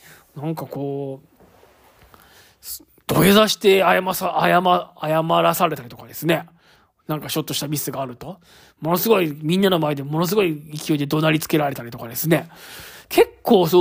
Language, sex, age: Japanese, male, 20-39